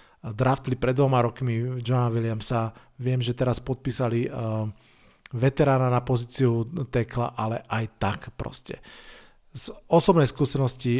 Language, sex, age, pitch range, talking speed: Slovak, male, 40-59, 115-135 Hz, 115 wpm